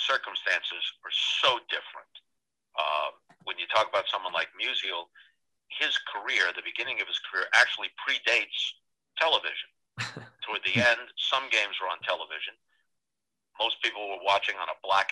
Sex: male